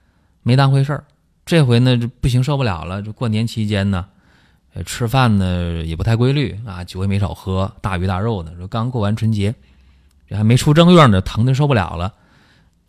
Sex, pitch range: male, 85-115 Hz